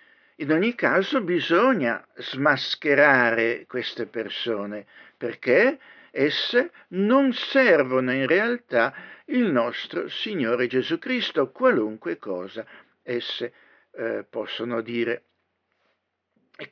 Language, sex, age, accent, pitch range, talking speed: Italian, male, 60-79, native, 130-185 Hz, 90 wpm